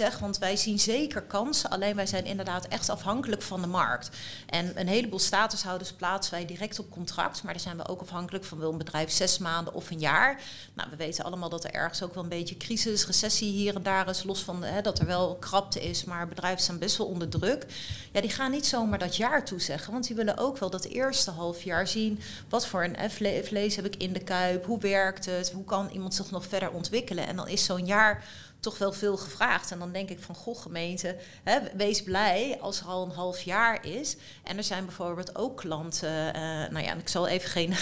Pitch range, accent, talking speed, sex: 175-205 Hz, Dutch, 235 wpm, female